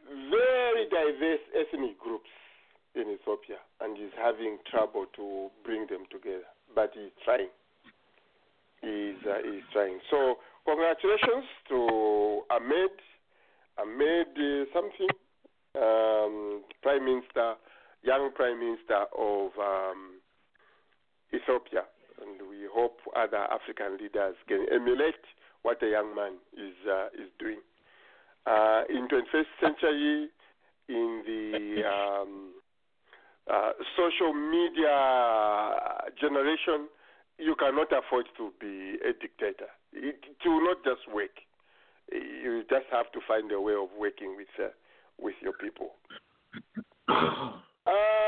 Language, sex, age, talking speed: English, male, 50-69, 115 wpm